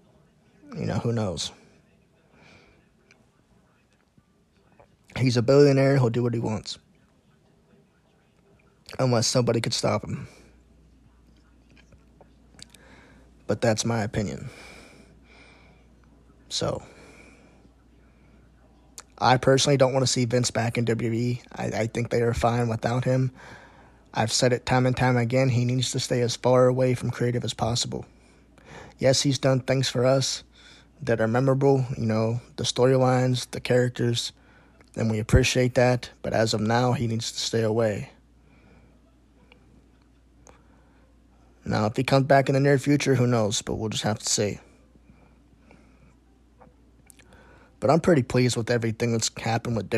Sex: male